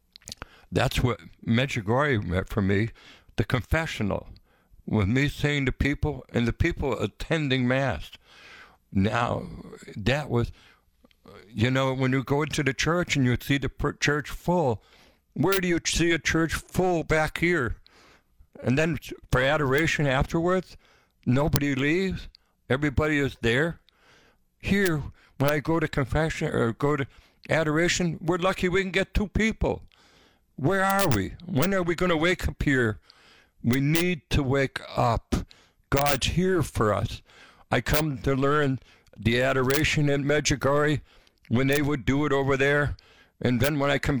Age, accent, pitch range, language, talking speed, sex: 60-79, American, 115-155 Hz, English, 150 wpm, male